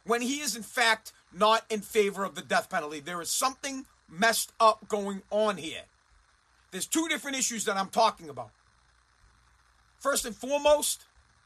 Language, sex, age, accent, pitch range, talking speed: English, male, 40-59, American, 210-245 Hz, 160 wpm